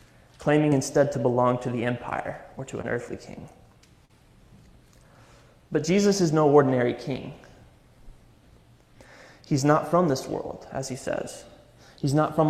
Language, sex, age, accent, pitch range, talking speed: English, male, 20-39, American, 125-150 Hz, 140 wpm